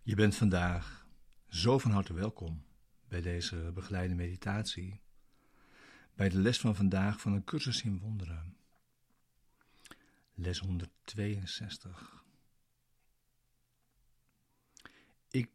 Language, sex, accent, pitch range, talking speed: Dutch, male, Dutch, 95-125 Hz, 95 wpm